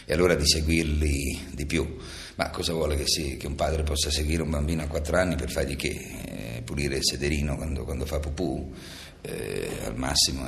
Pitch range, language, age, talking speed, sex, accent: 70-85 Hz, Italian, 50-69, 200 wpm, male, native